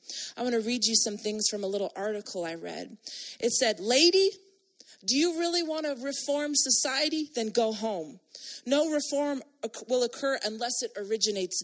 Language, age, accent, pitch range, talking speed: English, 30-49, American, 215-280 Hz, 170 wpm